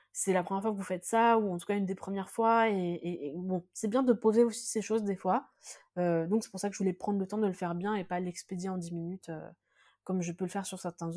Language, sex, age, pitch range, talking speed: French, female, 20-39, 175-225 Hz, 310 wpm